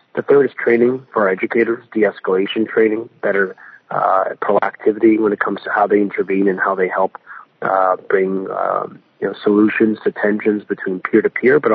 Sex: male